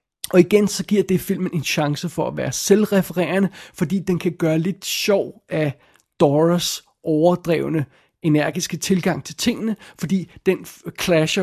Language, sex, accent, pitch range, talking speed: Danish, male, native, 155-195 Hz, 145 wpm